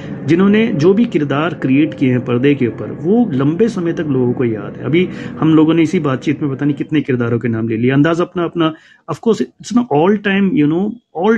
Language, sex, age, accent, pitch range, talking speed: Hindi, male, 30-49, native, 130-175 Hz, 235 wpm